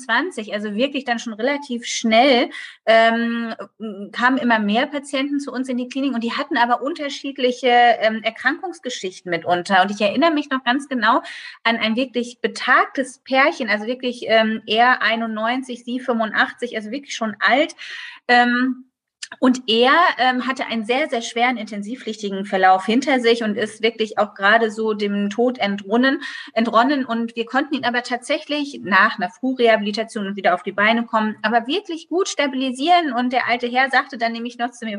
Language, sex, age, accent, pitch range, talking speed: German, female, 30-49, German, 220-265 Hz, 165 wpm